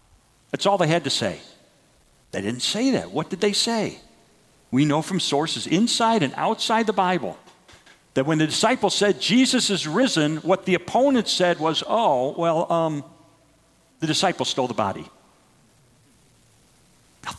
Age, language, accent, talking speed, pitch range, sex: 50-69, English, American, 155 wpm, 160-255 Hz, male